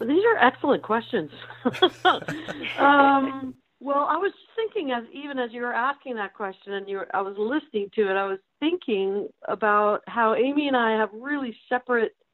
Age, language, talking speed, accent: 50-69, English, 175 wpm, American